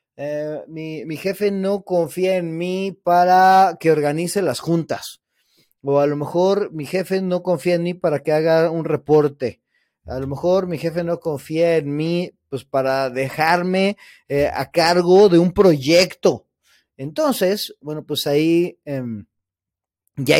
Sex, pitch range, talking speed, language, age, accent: male, 140-185 Hz, 155 wpm, Spanish, 30-49, Mexican